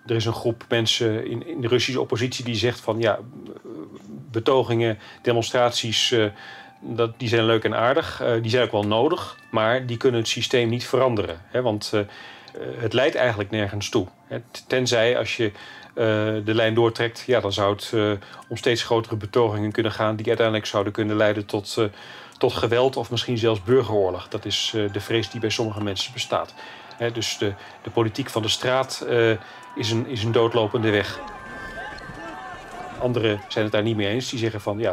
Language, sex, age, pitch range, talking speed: Dutch, male, 40-59, 110-120 Hz, 165 wpm